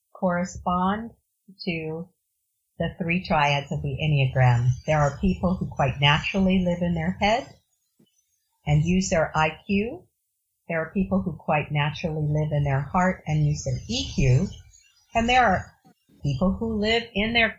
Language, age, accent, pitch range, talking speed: English, 50-69, American, 145-190 Hz, 150 wpm